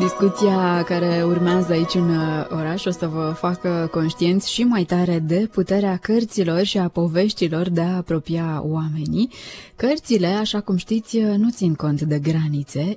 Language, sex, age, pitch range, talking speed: Romanian, female, 20-39, 155-215 Hz, 155 wpm